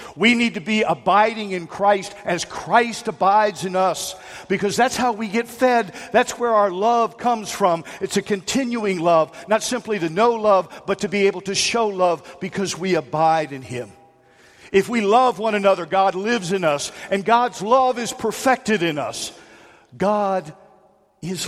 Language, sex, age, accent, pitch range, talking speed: English, male, 50-69, American, 190-245 Hz, 175 wpm